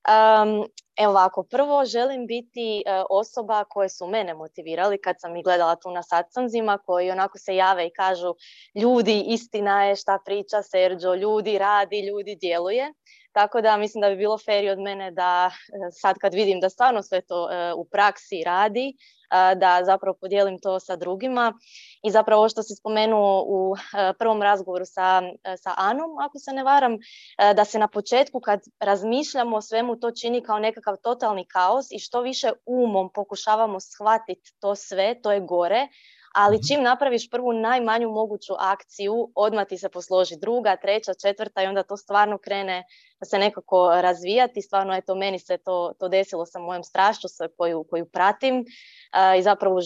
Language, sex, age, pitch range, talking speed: Croatian, female, 20-39, 190-230 Hz, 165 wpm